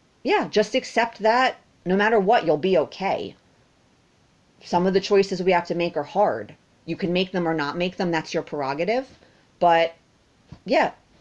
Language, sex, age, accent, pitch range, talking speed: English, female, 30-49, American, 145-185 Hz, 175 wpm